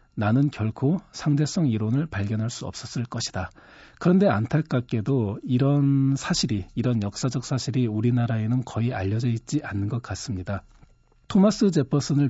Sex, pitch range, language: male, 110-140 Hz, Korean